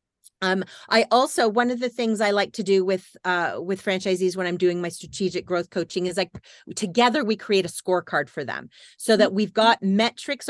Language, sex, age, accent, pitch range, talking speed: English, female, 30-49, American, 180-215 Hz, 205 wpm